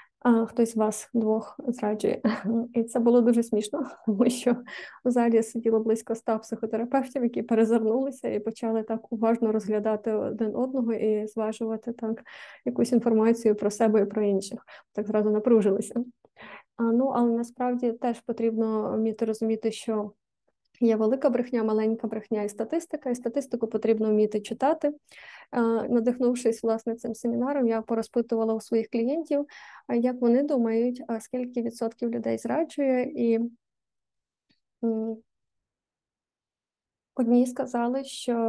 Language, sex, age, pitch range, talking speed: Ukrainian, female, 20-39, 225-250 Hz, 125 wpm